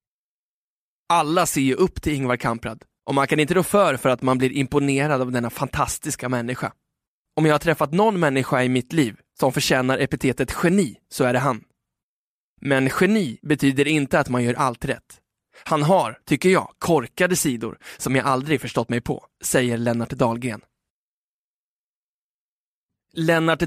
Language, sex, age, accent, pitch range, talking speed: Swedish, male, 20-39, native, 130-160 Hz, 160 wpm